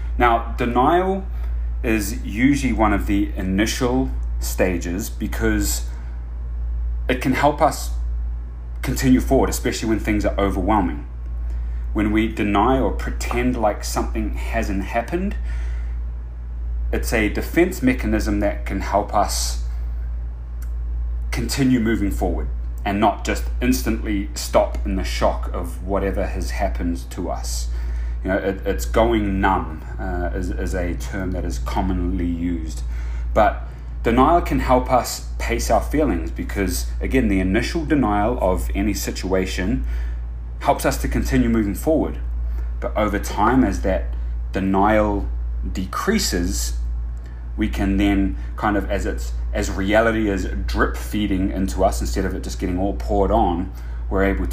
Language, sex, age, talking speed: English, male, 30-49, 130 wpm